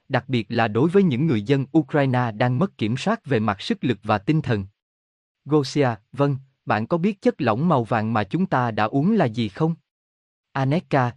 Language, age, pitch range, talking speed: Vietnamese, 20-39, 110-155 Hz, 205 wpm